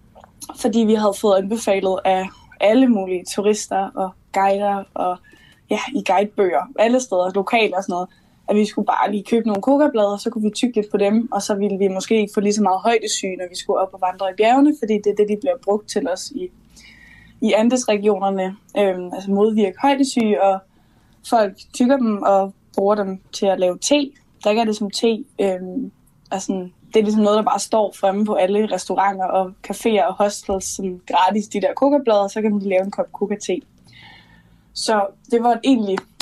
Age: 10-29